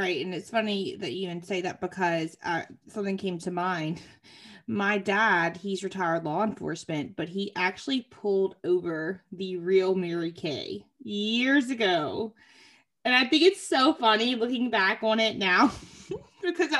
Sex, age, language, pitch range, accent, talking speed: female, 20-39, English, 200-295 Hz, American, 155 wpm